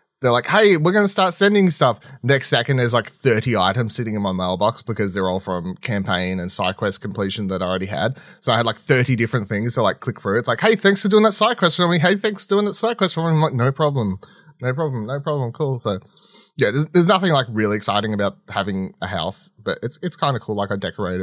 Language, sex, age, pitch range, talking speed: English, male, 30-49, 105-155 Hz, 265 wpm